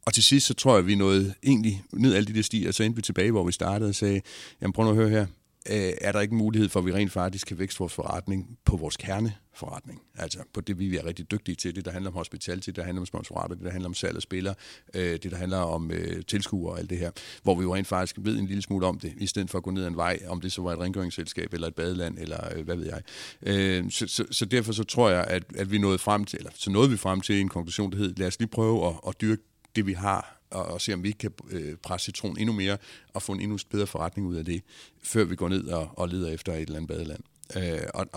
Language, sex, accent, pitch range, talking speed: Danish, male, native, 90-105 Hz, 290 wpm